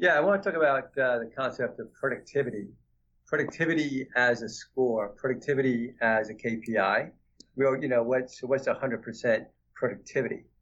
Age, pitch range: 50-69, 110-145 Hz